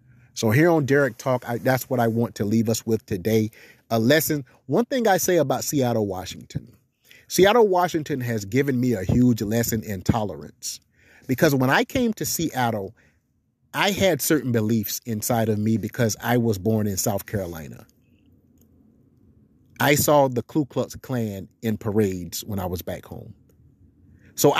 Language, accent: English, American